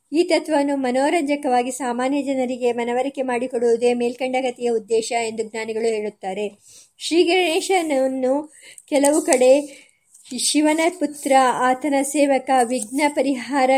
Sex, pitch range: male, 240-275 Hz